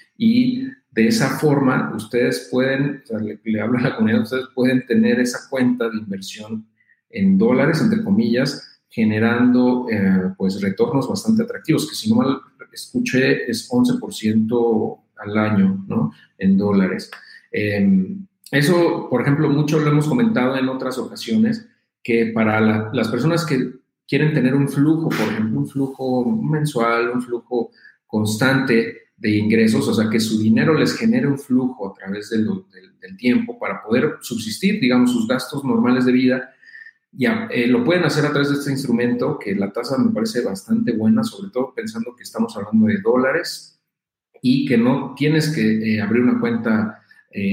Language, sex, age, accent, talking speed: Spanish, male, 40-59, Mexican, 165 wpm